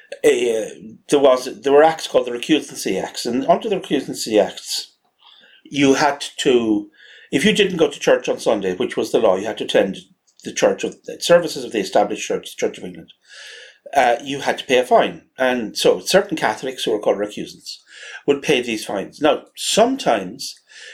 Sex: male